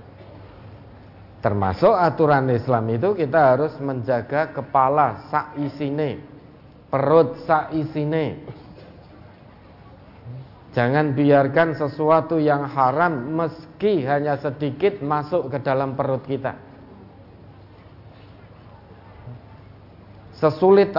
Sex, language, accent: male, Indonesian, native